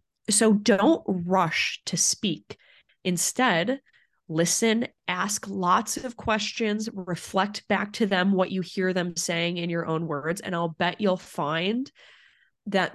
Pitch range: 170-205 Hz